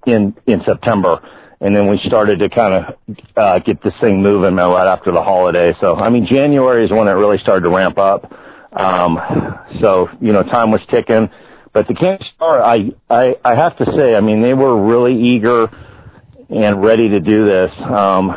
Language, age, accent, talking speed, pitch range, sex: English, 50-69, American, 195 wpm, 100-120 Hz, male